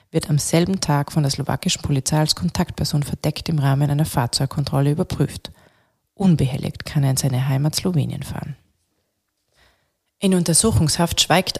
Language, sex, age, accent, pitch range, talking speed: German, female, 30-49, German, 140-170 Hz, 140 wpm